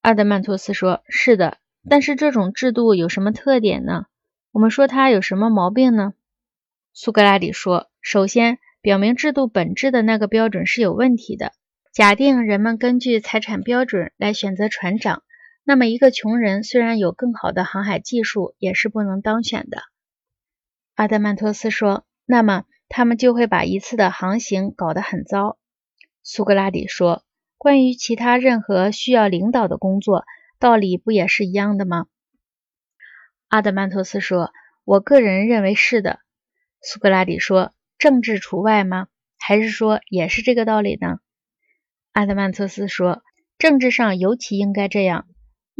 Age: 20-39